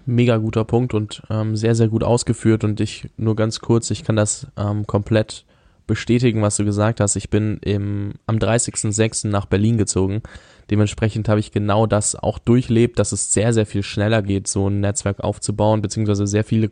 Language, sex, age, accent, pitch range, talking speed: German, male, 10-29, German, 105-115 Hz, 185 wpm